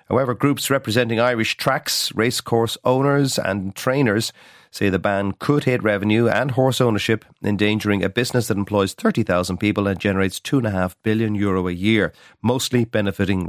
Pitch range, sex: 100-130 Hz, male